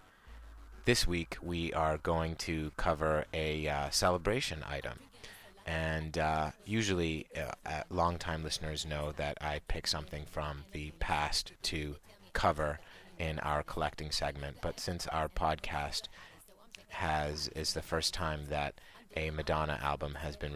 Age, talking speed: 30-49, 135 wpm